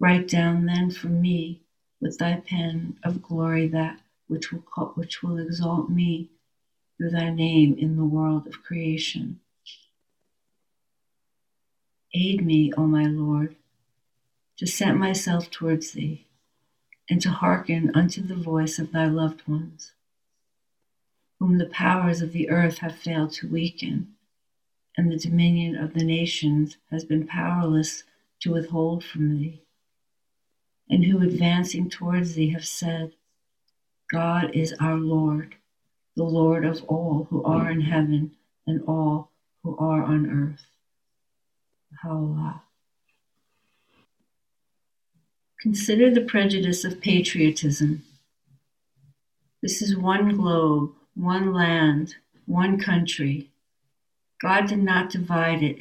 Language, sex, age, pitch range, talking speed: English, female, 60-79, 155-175 Hz, 120 wpm